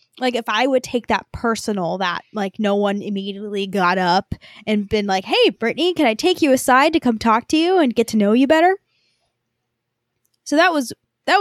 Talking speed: 195 wpm